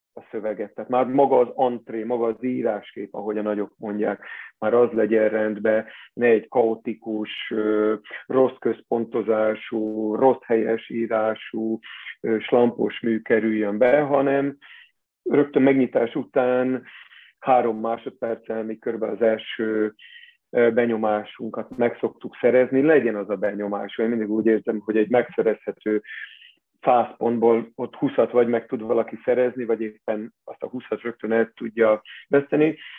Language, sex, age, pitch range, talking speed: Hungarian, male, 40-59, 110-130 Hz, 125 wpm